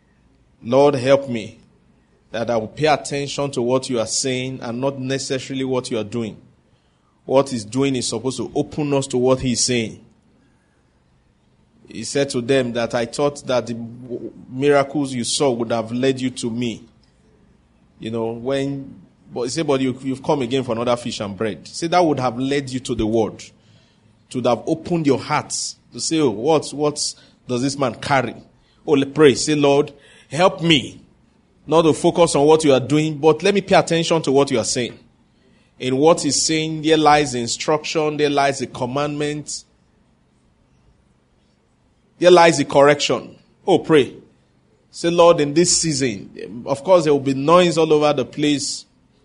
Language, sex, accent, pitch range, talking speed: English, male, Nigerian, 120-150 Hz, 180 wpm